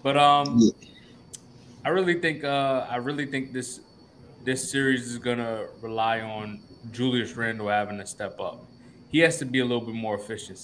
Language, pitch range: English, 120-145 Hz